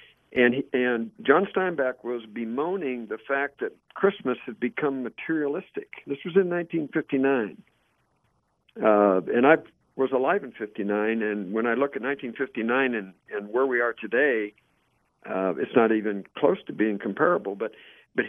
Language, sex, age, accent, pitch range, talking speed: English, male, 60-79, American, 115-155 Hz, 155 wpm